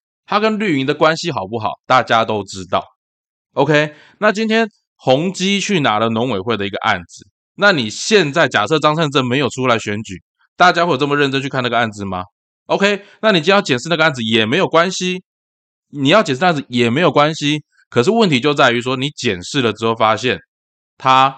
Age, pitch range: 20-39, 100-160 Hz